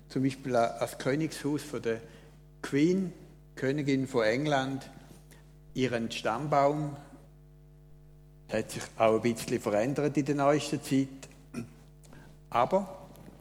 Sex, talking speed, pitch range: male, 110 wpm, 140-160 Hz